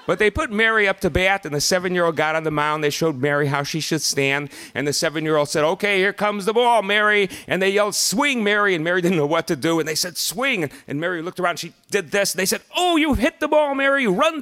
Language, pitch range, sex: English, 170-215 Hz, male